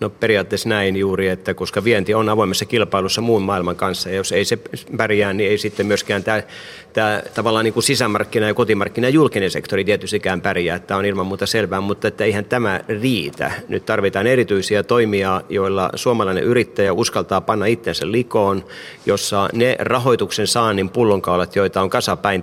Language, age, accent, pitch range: Finnish, 30-49, native, 95-110 Hz